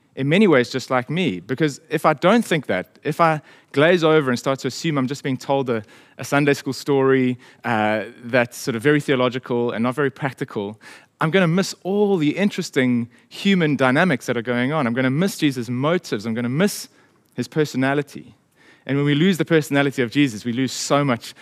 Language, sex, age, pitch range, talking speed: English, male, 30-49, 120-155 Hz, 205 wpm